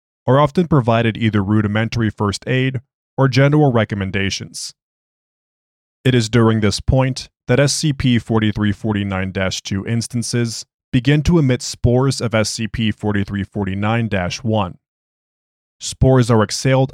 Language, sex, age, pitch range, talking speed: English, male, 20-39, 105-130 Hz, 95 wpm